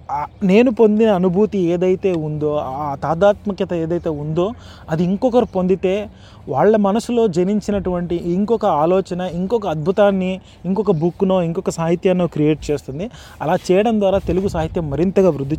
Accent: native